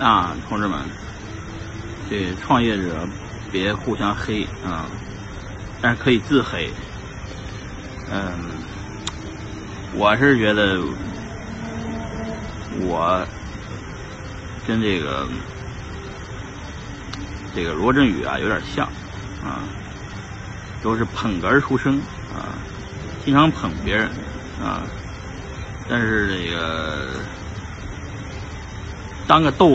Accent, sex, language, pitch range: native, male, Chinese, 95-120 Hz